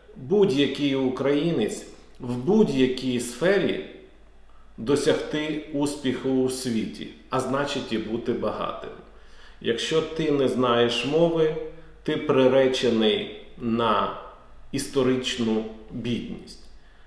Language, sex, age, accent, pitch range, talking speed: Ukrainian, male, 40-59, native, 120-160 Hz, 85 wpm